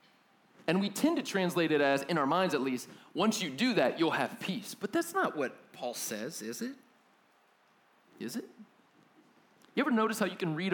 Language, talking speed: English, 200 wpm